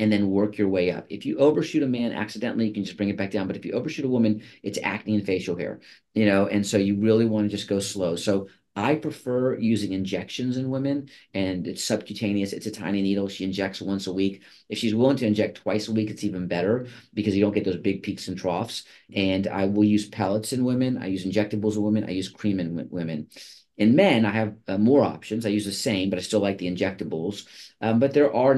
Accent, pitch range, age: American, 100-115 Hz, 40-59